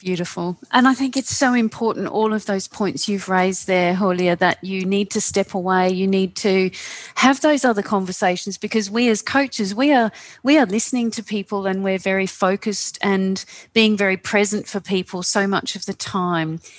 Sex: female